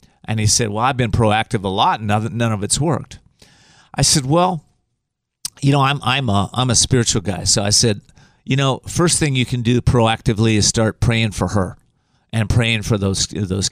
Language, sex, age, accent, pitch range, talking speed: English, male, 40-59, American, 105-140 Hz, 205 wpm